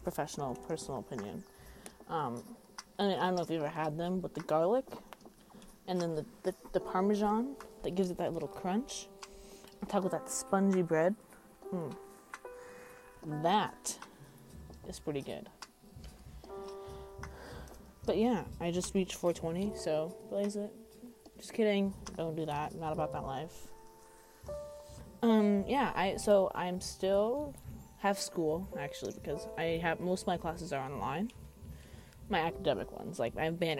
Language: English